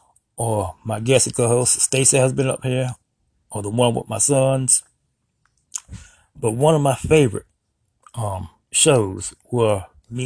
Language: English